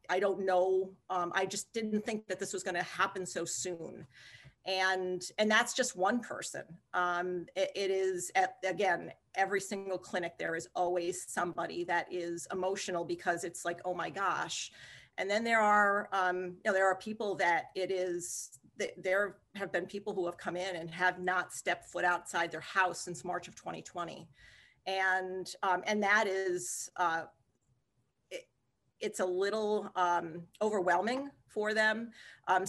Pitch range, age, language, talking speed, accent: 180-200 Hz, 40-59, English, 170 wpm, American